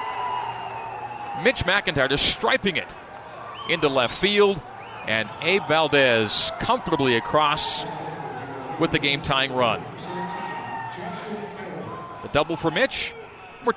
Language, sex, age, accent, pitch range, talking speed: English, male, 40-59, American, 120-150 Hz, 95 wpm